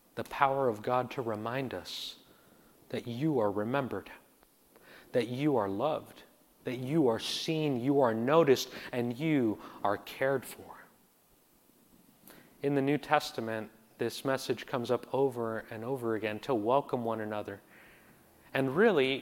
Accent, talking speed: American, 140 wpm